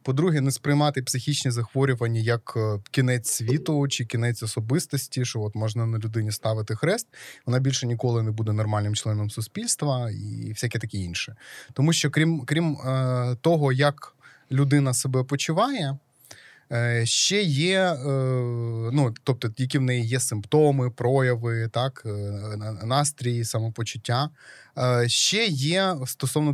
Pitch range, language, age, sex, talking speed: 115-145 Hz, Ukrainian, 20-39, male, 125 wpm